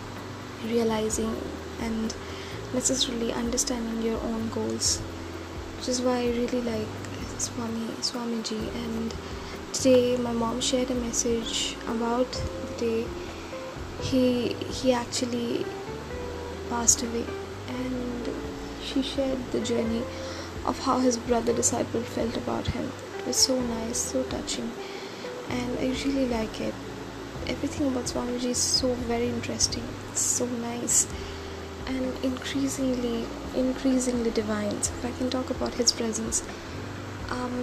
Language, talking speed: English, 120 wpm